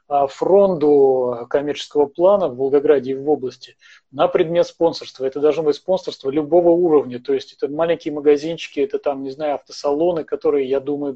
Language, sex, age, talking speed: Russian, male, 30-49, 160 wpm